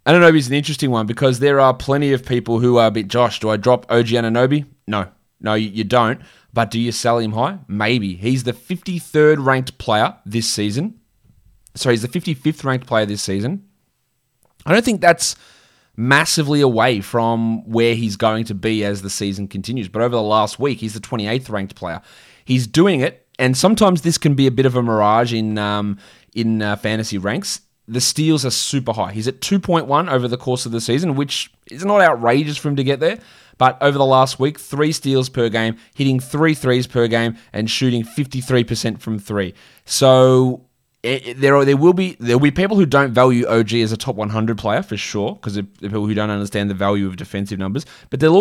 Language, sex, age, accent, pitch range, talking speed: English, male, 20-39, Australian, 110-135 Hz, 210 wpm